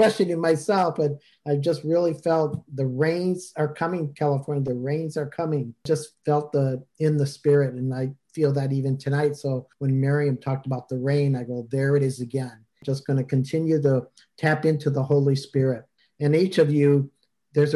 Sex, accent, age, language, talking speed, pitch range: male, American, 50-69, English, 185 wpm, 130-150 Hz